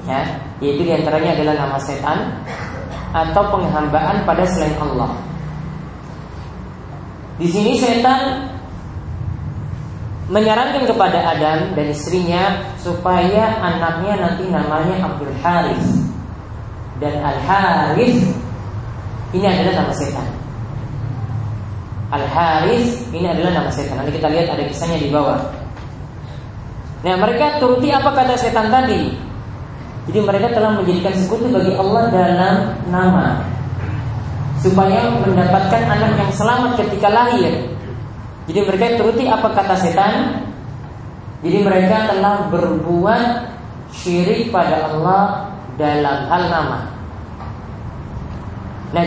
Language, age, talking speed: Indonesian, 20-39, 105 wpm